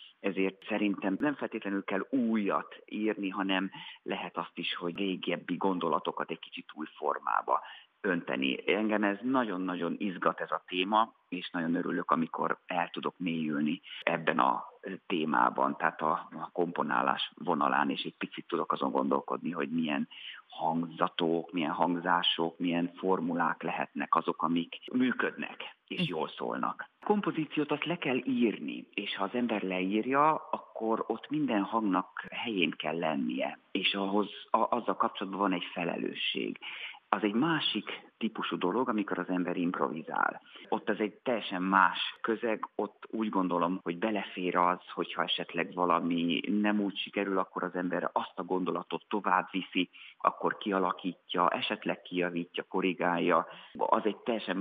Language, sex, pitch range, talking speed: Hungarian, male, 90-110 Hz, 140 wpm